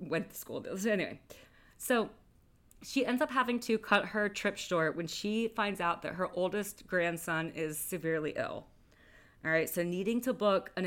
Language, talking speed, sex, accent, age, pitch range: English, 175 wpm, female, American, 30-49, 165-205 Hz